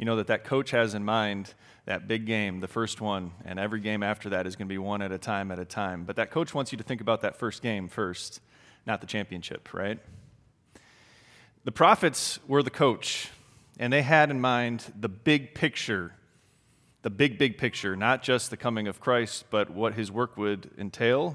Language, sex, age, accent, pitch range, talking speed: English, male, 30-49, American, 105-130 Hz, 210 wpm